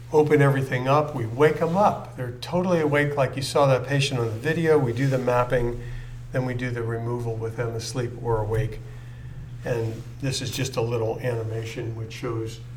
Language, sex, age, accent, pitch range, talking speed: English, male, 50-69, American, 120-140 Hz, 195 wpm